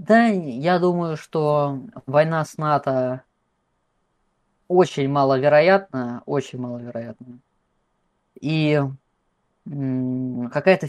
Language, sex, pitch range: Russian, female, 135-180 Hz